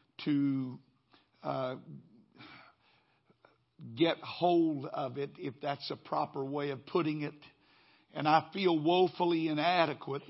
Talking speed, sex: 110 wpm, male